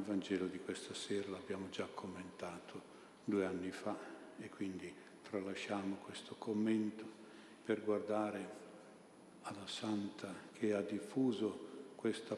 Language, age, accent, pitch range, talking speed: Italian, 50-69, native, 100-105 Hz, 115 wpm